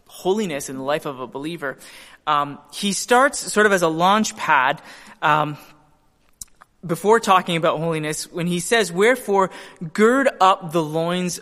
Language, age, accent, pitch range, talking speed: English, 20-39, American, 150-190 Hz, 150 wpm